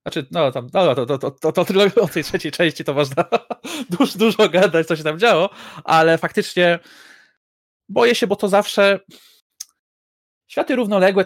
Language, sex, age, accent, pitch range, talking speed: Polish, male, 20-39, native, 130-175 Hz, 170 wpm